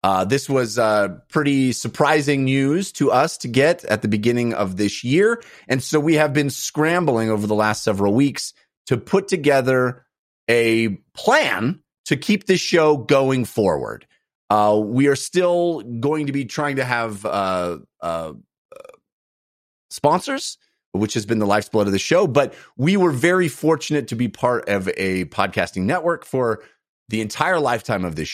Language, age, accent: English, 30-49, American